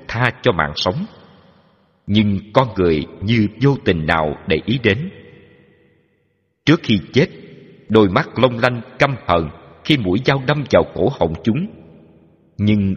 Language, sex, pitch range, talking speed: Vietnamese, male, 85-125 Hz, 150 wpm